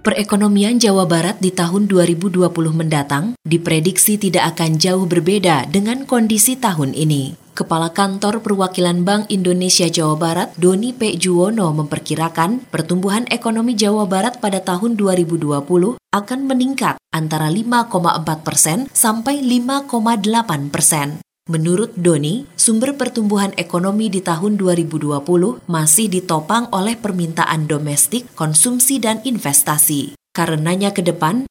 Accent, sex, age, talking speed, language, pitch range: native, female, 20-39, 115 wpm, Indonesian, 155-210 Hz